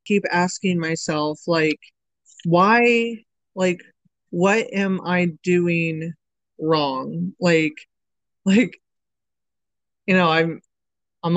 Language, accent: English, American